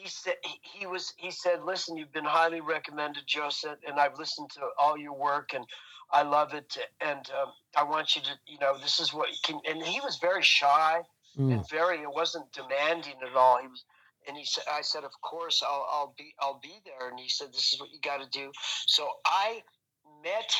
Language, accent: English, American